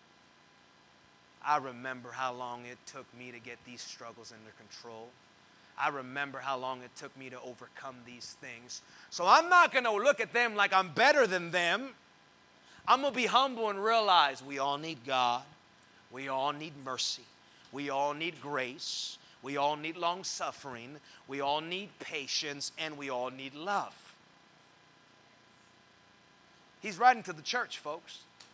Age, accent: 30-49, American